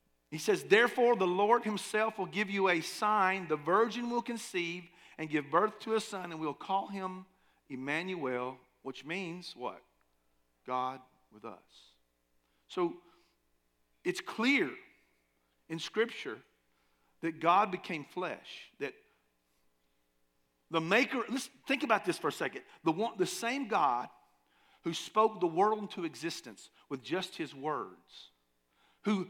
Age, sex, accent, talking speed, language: 50-69, male, American, 135 wpm, English